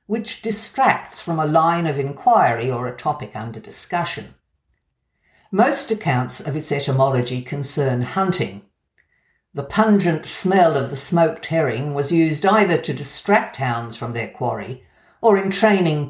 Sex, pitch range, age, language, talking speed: female, 130-185 Hz, 60-79, English, 140 wpm